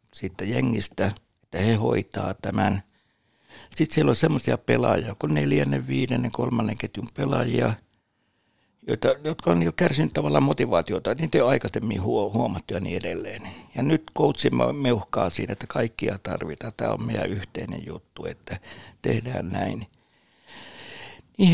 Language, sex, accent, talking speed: Finnish, male, native, 135 wpm